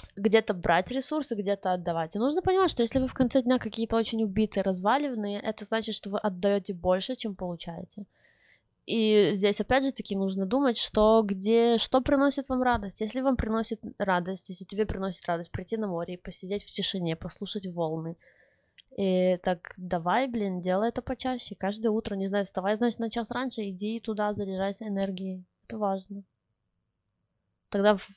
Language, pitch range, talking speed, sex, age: Russian, 185-225 Hz, 170 wpm, female, 20-39